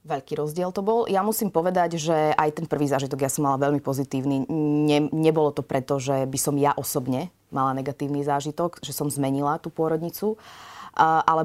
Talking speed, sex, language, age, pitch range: 185 wpm, female, Slovak, 30-49, 135-155 Hz